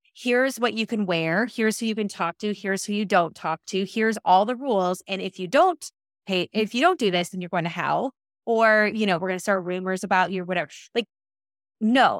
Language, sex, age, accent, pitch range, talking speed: English, female, 20-39, American, 180-230 Hz, 240 wpm